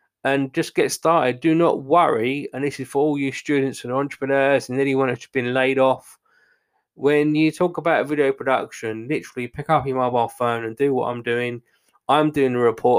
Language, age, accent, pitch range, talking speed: English, 20-39, British, 120-140 Hz, 205 wpm